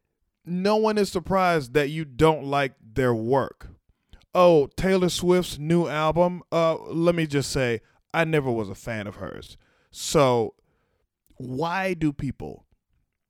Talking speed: 140 wpm